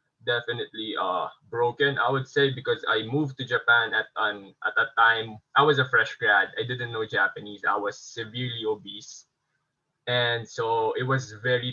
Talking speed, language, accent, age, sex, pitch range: 175 wpm, English, Filipino, 20-39, male, 120-140 Hz